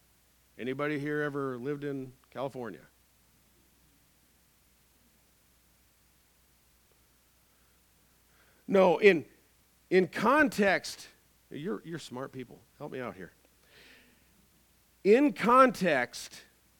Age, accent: 50-69, American